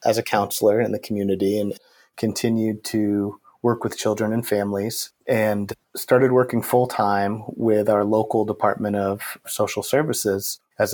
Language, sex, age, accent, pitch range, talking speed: English, male, 30-49, American, 105-125 Hz, 150 wpm